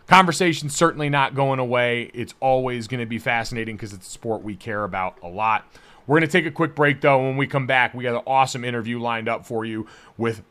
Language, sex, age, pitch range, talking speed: English, male, 30-49, 130-175 Hz, 240 wpm